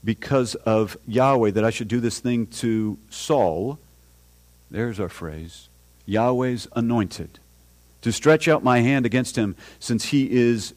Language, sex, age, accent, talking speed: English, male, 50-69, American, 145 wpm